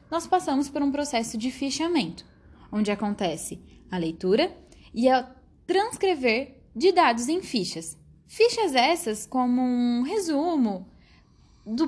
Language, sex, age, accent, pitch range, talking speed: Portuguese, female, 10-29, Brazilian, 220-320 Hz, 120 wpm